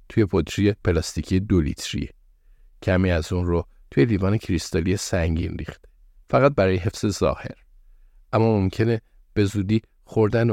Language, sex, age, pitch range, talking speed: Persian, male, 50-69, 85-110 Hz, 130 wpm